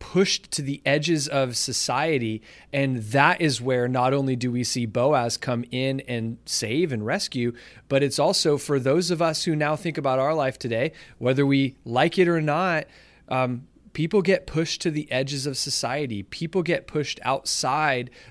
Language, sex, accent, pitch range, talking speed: English, male, American, 120-150 Hz, 180 wpm